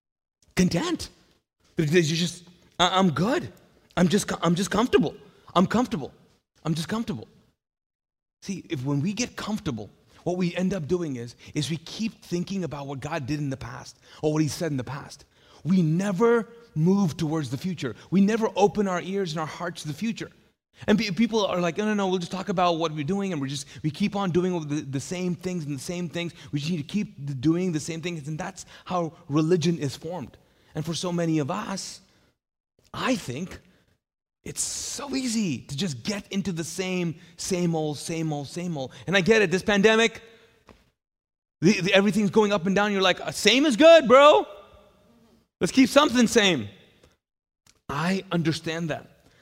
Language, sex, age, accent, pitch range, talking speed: English, male, 30-49, American, 160-200 Hz, 185 wpm